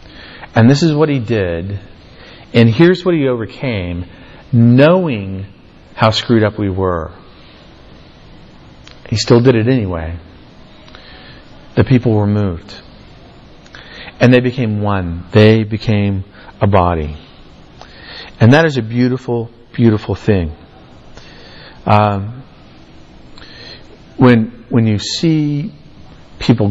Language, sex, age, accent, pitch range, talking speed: English, male, 40-59, American, 95-115 Hz, 105 wpm